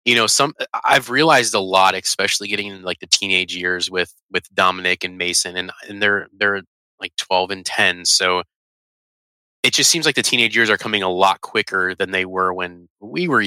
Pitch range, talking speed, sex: 90-115 Hz, 205 wpm, male